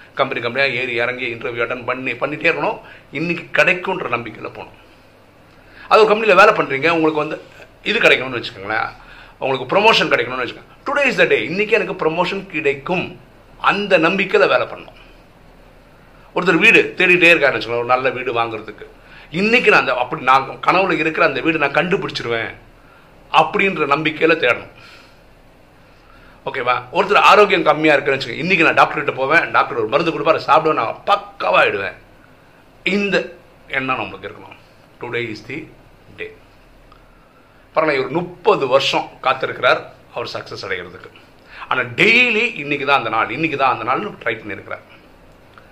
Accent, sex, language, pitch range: native, male, Tamil, 130-195 Hz